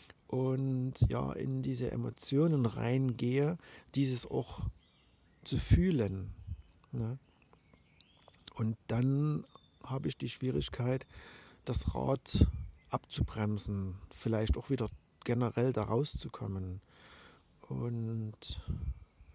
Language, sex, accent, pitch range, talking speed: German, male, German, 95-130 Hz, 80 wpm